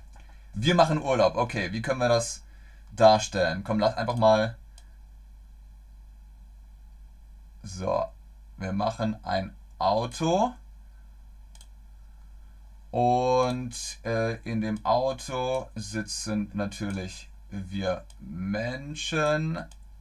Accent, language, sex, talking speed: German, German, male, 80 wpm